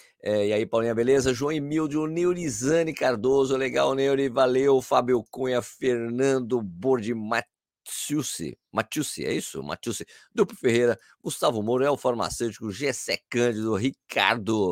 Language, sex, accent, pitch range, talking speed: Portuguese, male, Brazilian, 110-155 Hz, 120 wpm